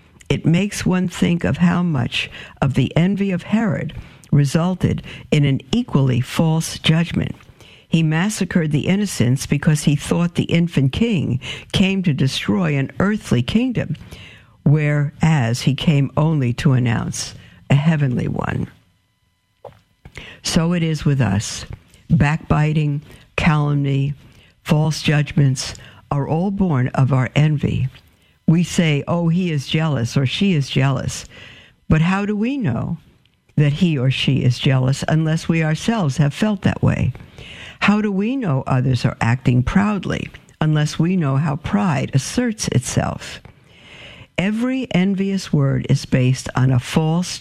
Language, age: English, 60-79